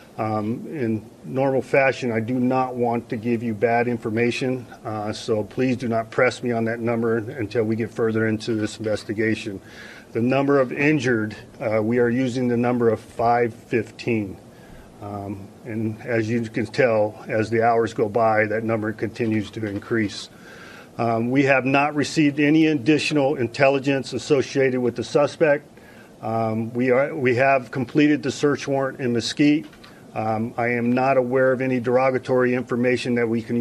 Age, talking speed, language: 40-59, 165 wpm, English